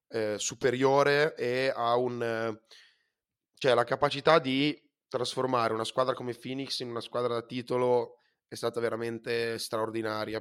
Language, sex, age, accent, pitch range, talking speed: Italian, male, 20-39, native, 110-125 Hz, 140 wpm